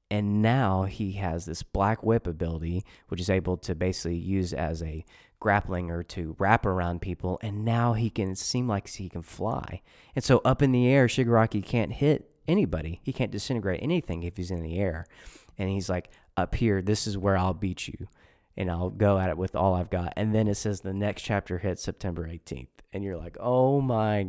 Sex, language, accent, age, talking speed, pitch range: male, English, American, 30-49, 210 wpm, 90-110 Hz